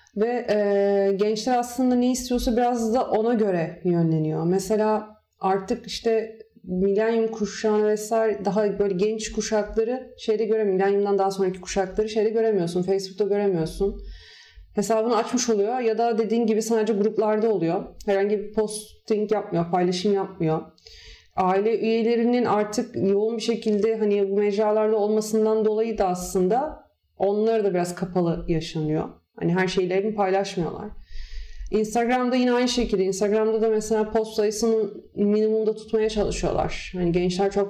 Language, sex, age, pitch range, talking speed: Turkish, female, 30-49, 180-220 Hz, 130 wpm